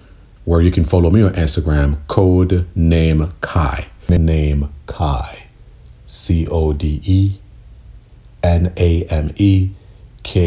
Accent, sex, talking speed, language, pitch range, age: American, male, 120 wpm, English, 80-100 Hz, 40-59